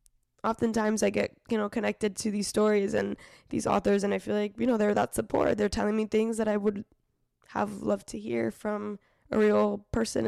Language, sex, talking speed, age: English, female, 210 wpm, 10-29